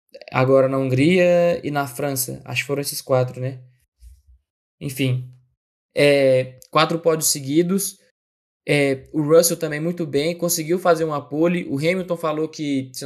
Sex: male